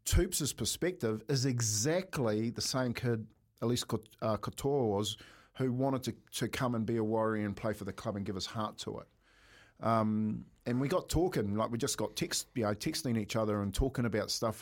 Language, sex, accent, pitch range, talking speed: English, male, Australian, 110-145 Hz, 205 wpm